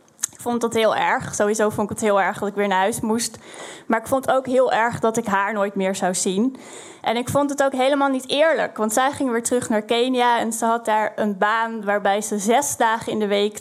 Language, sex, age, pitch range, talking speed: Dutch, female, 10-29, 205-235 Hz, 255 wpm